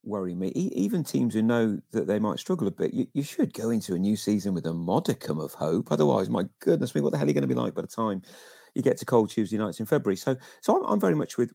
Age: 40-59